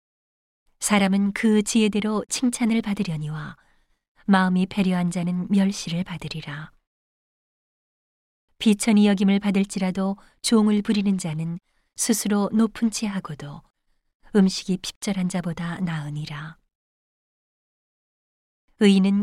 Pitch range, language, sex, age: 160-210 Hz, Korean, female, 30-49